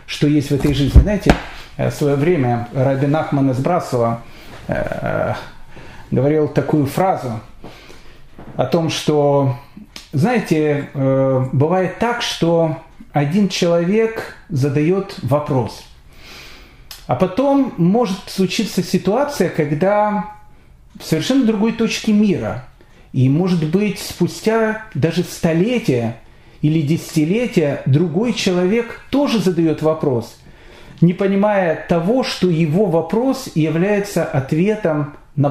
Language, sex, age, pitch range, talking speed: Russian, male, 40-59, 140-185 Hz, 100 wpm